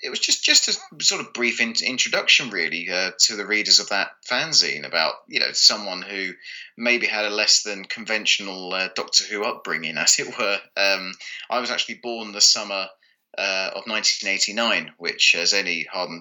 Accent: British